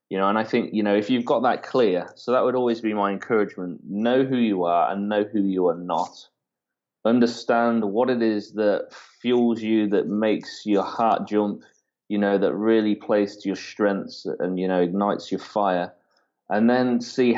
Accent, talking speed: British, 195 wpm